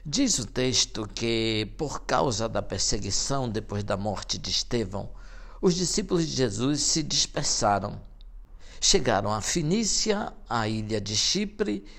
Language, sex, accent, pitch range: Portuguese, male, Brazilian, 105-160 Hz